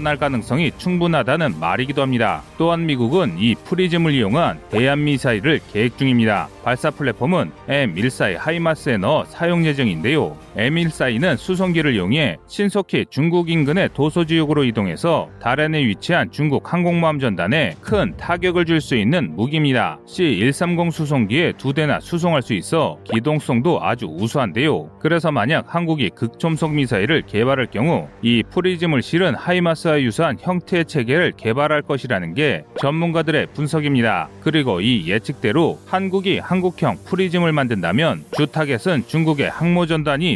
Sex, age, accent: male, 30-49, native